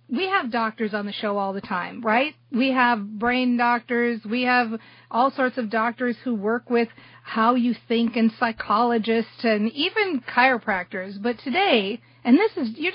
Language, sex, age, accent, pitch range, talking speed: English, female, 40-59, American, 220-265 Hz, 170 wpm